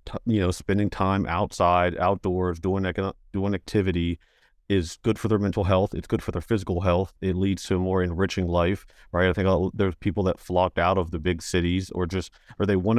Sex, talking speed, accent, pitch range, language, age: male, 210 wpm, American, 90-100 Hz, English, 40-59